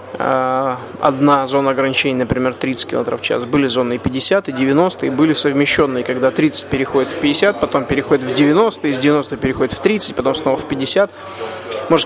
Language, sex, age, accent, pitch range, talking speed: Russian, male, 20-39, native, 130-150 Hz, 180 wpm